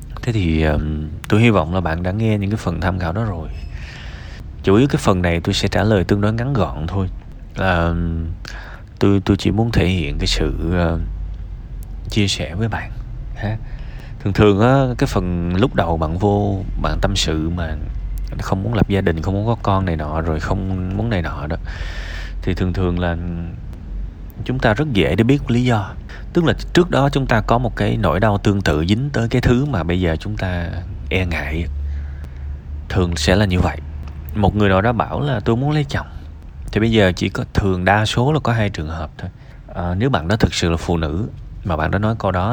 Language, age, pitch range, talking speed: Vietnamese, 20-39, 80-105 Hz, 225 wpm